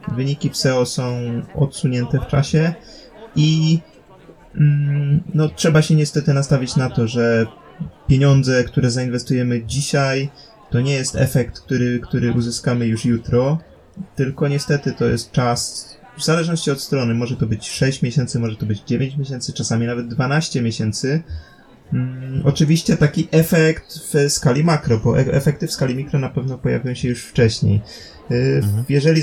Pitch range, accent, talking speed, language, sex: 120-145 Hz, native, 145 wpm, Polish, male